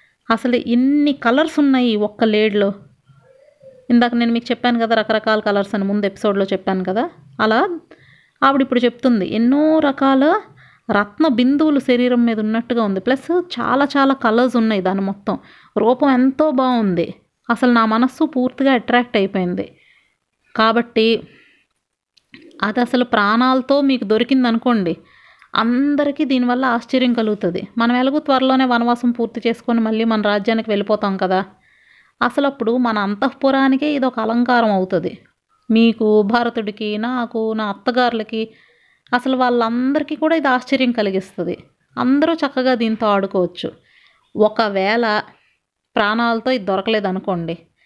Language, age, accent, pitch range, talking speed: Telugu, 30-49, native, 215-265 Hz, 120 wpm